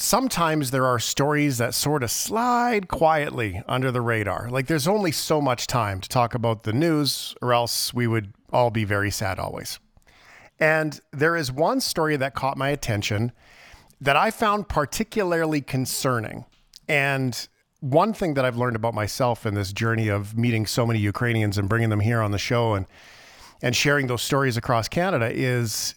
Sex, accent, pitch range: male, American, 115-155 Hz